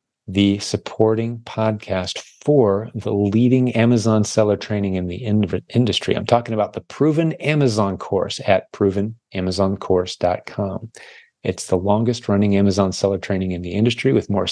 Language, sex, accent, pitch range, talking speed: English, male, American, 95-115 Hz, 135 wpm